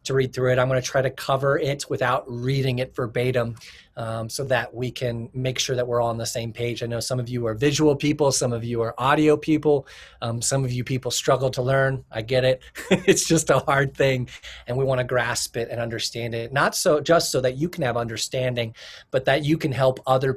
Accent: American